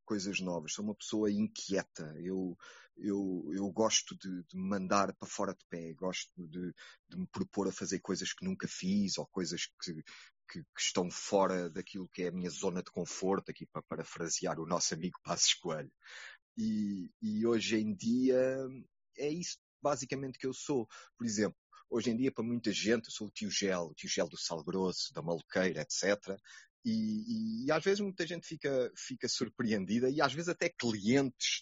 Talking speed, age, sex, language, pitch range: 185 wpm, 30-49, male, Portuguese, 95-125 Hz